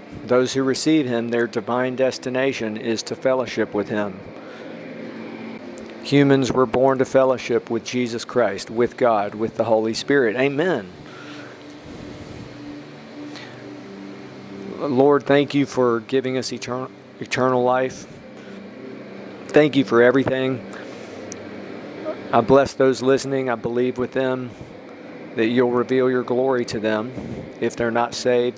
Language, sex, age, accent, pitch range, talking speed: English, male, 50-69, American, 115-130 Hz, 120 wpm